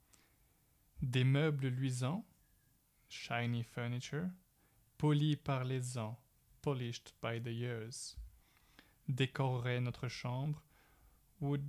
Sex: male